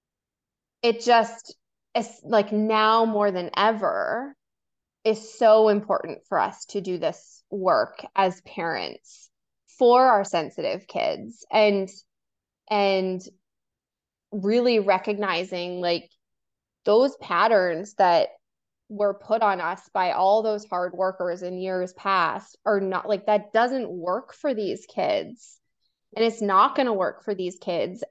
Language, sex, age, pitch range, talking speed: English, female, 20-39, 185-220 Hz, 130 wpm